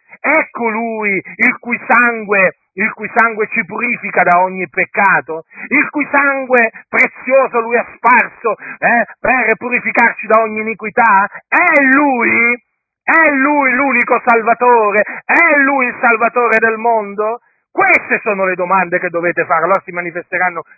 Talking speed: 140 wpm